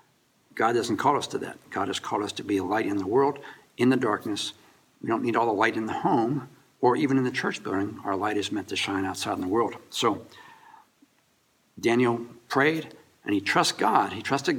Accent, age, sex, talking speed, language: American, 60-79, male, 220 wpm, English